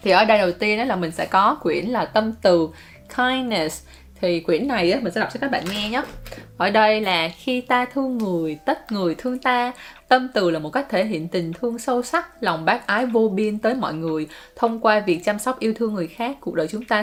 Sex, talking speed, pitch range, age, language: female, 240 wpm, 175-240 Hz, 10-29, English